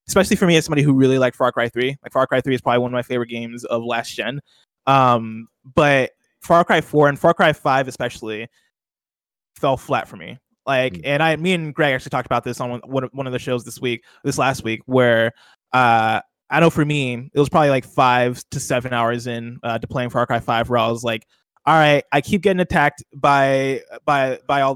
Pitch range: 120-145 Hz